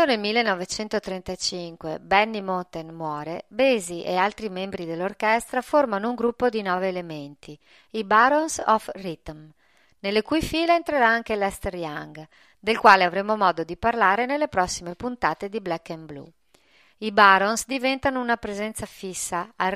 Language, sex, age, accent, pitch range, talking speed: Italian, female, 40-59, native, 170-230 Hz, 145 wpm